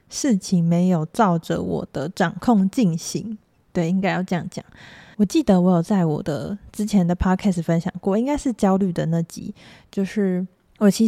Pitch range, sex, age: 170-205 Hz, female, 20-39